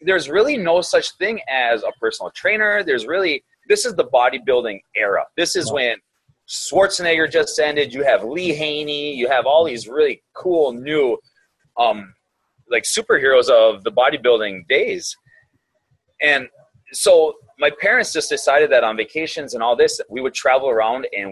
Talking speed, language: 160 wpm, English